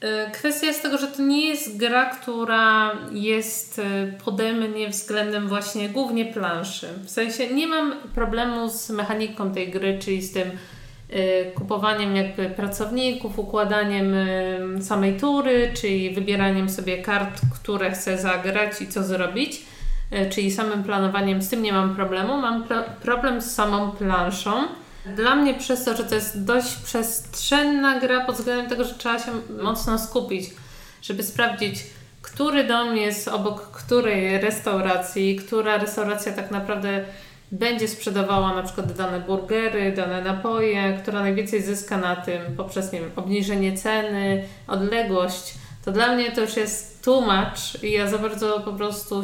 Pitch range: 195-230 Hz